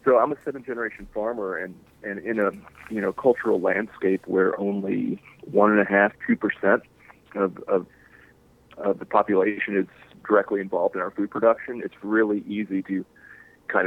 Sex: male